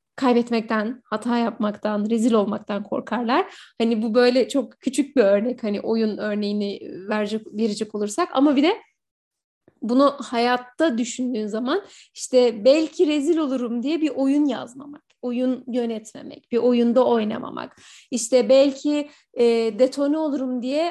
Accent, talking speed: native, 125 wpm